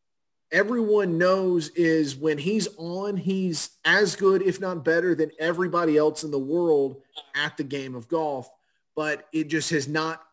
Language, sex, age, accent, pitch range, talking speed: English, male, 30-49, American, 150-175 Hz, 165 wpm